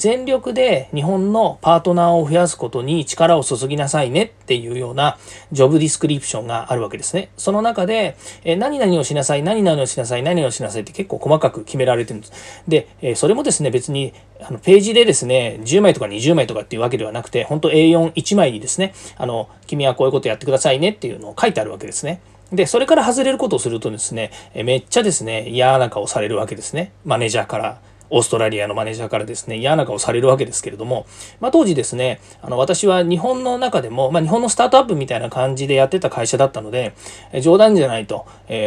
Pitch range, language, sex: 120-175 Hz, Japanese, male